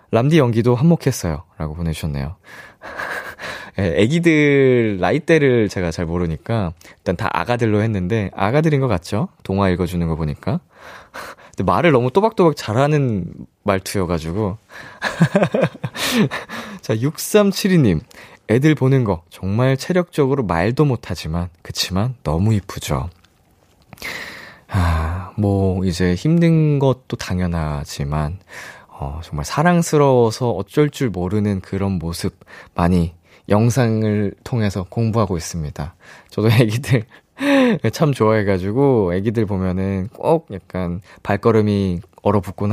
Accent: native